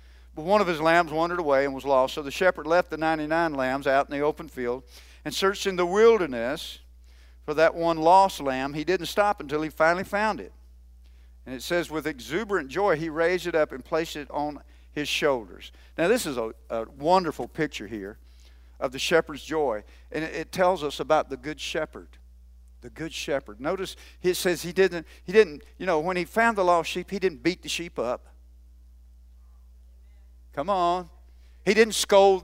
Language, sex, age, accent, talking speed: English, male, 50-69, American, 190 wpm